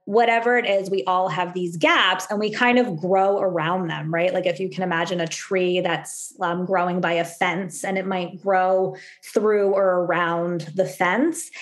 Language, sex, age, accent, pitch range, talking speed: English, female, 20-39, American, 185-210 Hz, 195 wpm